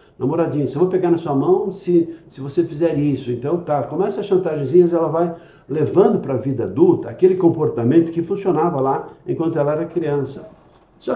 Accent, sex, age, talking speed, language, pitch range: Brazilian, male, 60-79, 175 wpm, Portuguese, 135-180 Hz